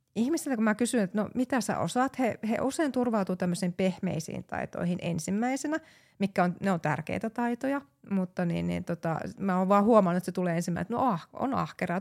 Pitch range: 180-215 Hz